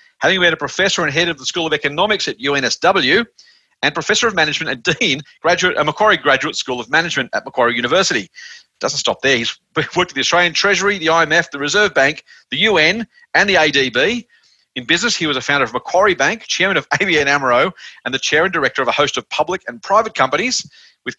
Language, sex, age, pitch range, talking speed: English, male, 40-59, 125-170 Hz, 210 wpm